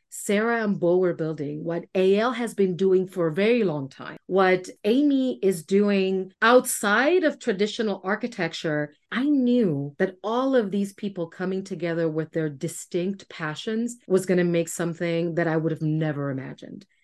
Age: 30-49